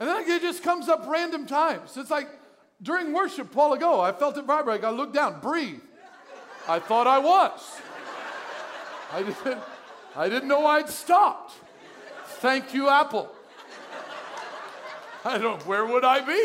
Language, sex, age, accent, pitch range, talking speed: English, male, 50-69, American, 215-290 Hz, 155 wpm